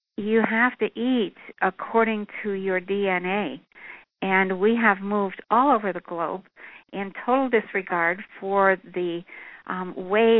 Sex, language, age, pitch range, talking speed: female, English, 60-79, 180-210 Hz, 135 wpm